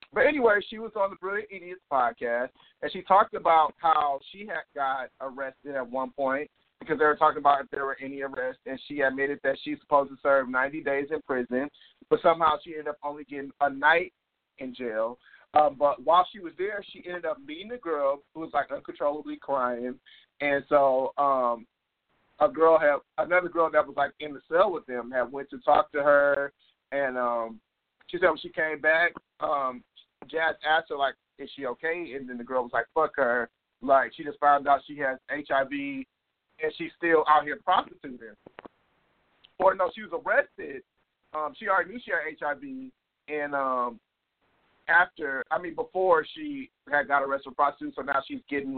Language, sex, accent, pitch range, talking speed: English, male, American, 135-170 Hz, 195 wpm